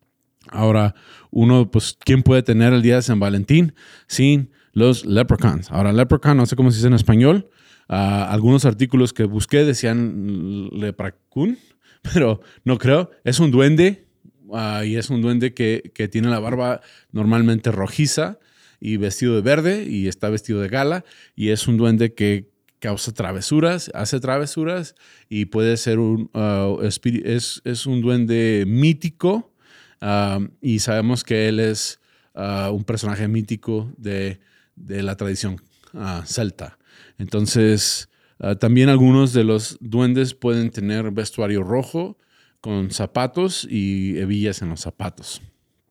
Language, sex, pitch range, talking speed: Spanish, male, 100-125 Hz, 140 wpm